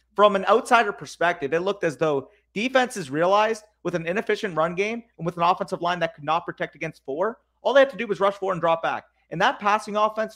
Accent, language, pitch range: American, English, 150-200 Hz